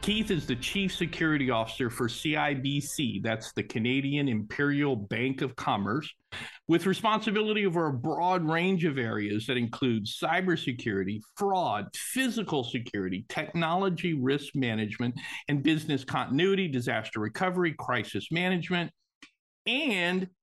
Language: English